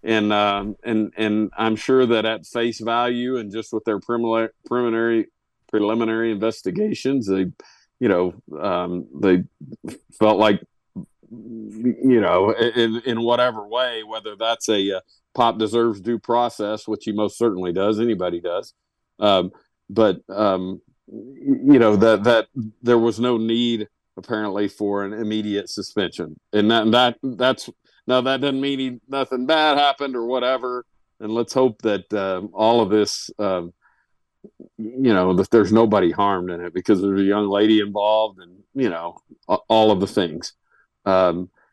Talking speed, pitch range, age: 155 wpm, 100-120 Hz, 50-69